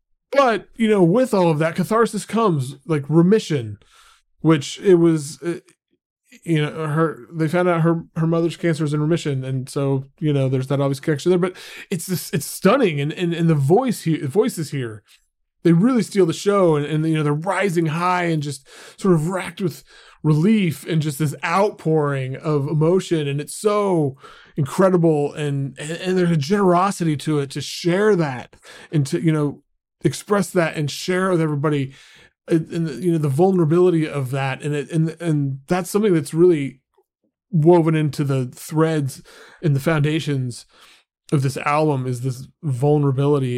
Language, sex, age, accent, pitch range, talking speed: English, male, 20-39, American, 145-180 Hz, 180 wpm